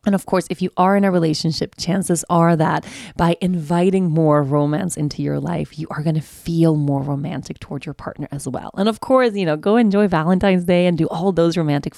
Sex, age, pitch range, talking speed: female, 20-39, 155-200 Hz, 225 wpm